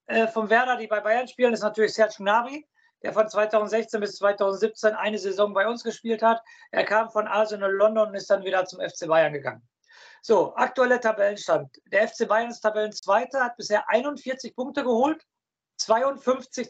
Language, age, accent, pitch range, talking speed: German, 50-69, German, 210-255 Hz, 175 wpm